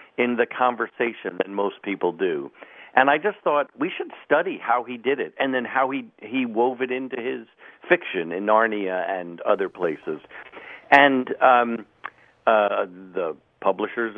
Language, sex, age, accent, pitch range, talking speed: English, male, 50-69, American, 100-135 Hz, 160 wpm